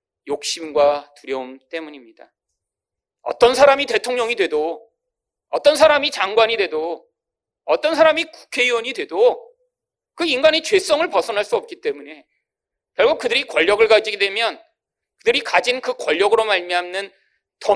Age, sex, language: 40-59, male, Korean